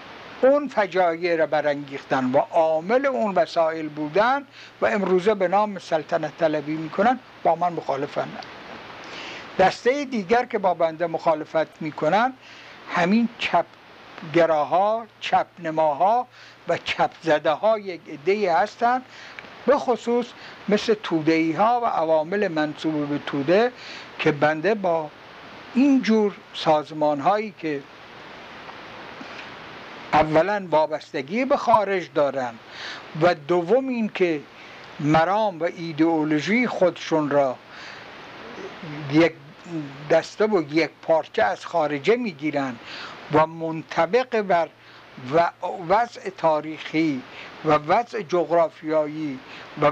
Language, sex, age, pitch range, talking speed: Persian, male, 60-79, 155-210 Hz, 105 wpm